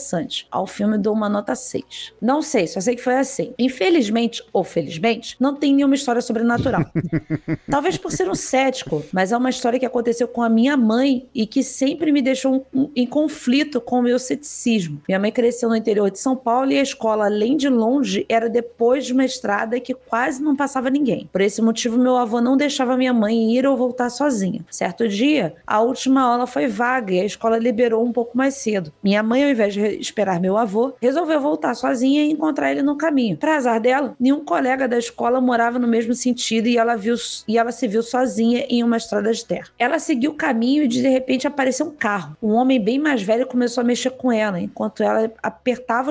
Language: Portuguese